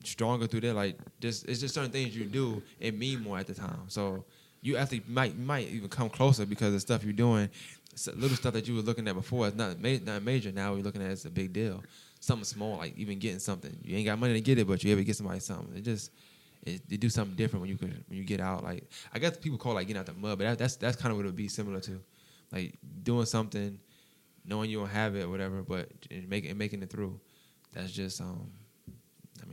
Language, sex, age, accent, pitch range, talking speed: English, male, 10-29, American, 100-120 Hz, 250 wpm